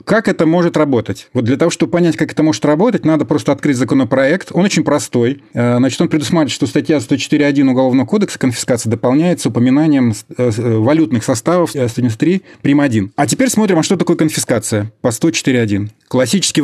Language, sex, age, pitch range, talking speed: Russian, male, 30-49, 125-155 Hz, 160 wpm